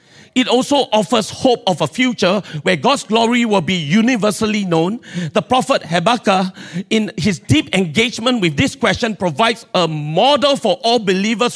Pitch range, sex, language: 170-225 Hz, male, English